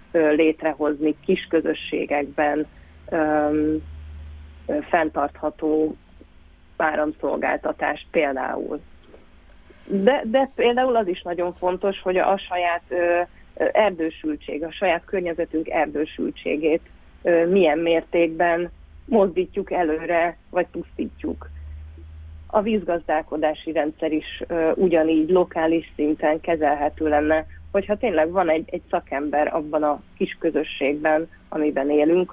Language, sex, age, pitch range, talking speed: Hungarian, female, 30-49, 150-175 Hz, 100 wpm